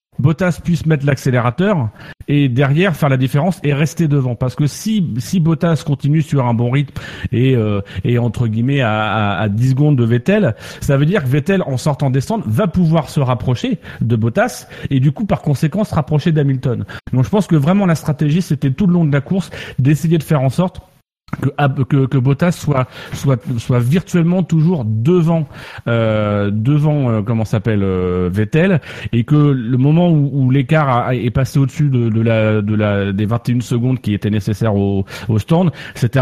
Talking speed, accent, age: 195 wpm, French, 30-49